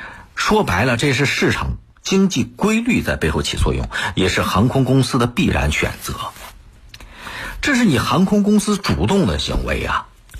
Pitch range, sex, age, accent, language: 85-125 Hz, male, 50-69, native, Chinese